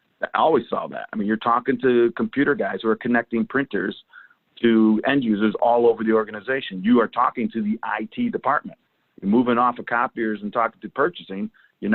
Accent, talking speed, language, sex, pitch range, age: American, 195 wpm, English, male, 105-125 Hz, 50-69